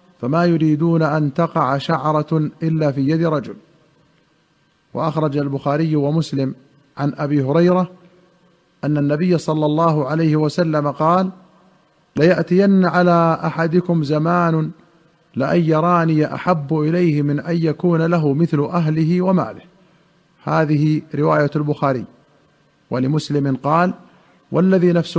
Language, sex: Arabic, male